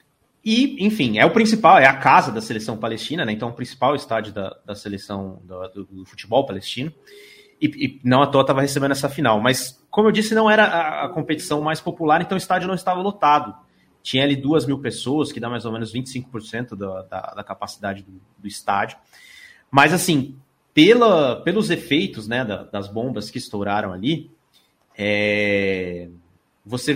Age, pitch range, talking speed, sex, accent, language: 30-49, 105-160 Hz, 170 wpm, male, Brazilian, Portuguese